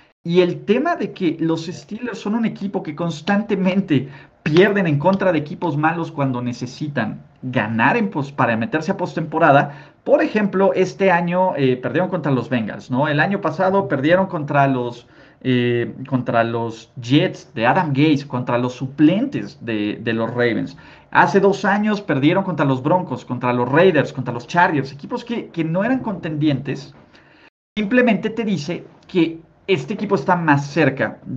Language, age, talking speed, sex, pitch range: Spanish, 40-59, 165 wpm, male, 130-195 Hz